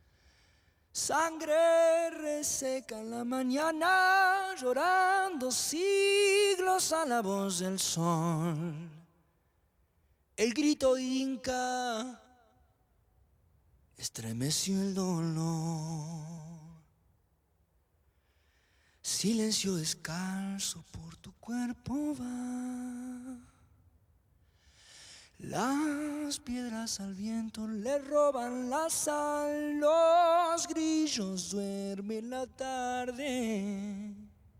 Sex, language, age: male, Spanish, 30-49